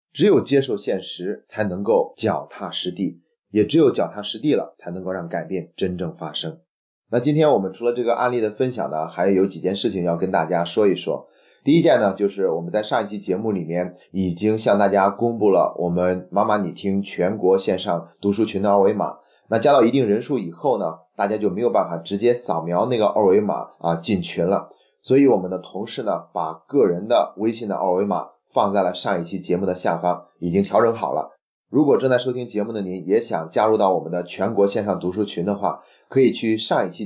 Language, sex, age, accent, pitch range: Chinese, male, 30-49, native, 90-115 Hz